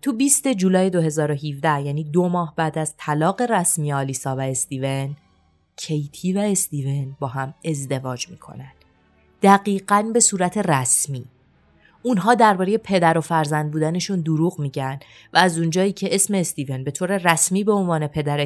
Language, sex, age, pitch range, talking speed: Persian, female, 30-49, 140-205 Hz, 145 wpm